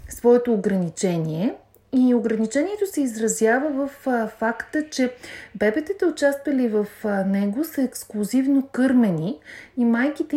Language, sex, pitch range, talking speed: Bulgarian, female, 200-270 Hz, 110 wpm